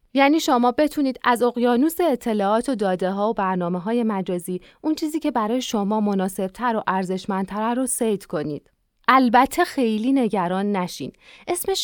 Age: 30-49